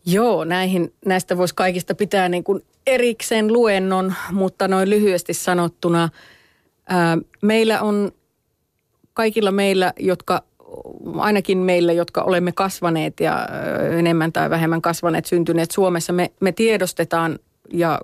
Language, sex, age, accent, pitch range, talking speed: Finnish, female, 30-49, native, 165-195 Hz, 115 wpm